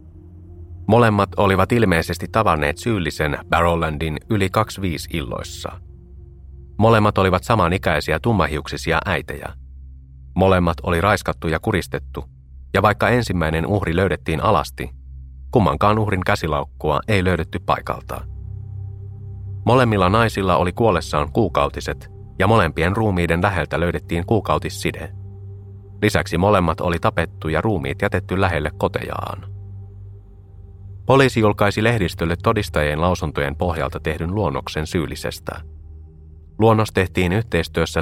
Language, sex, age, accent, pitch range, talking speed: Finnish, male, 30-49, native, 75-100 Hz, 100 wpm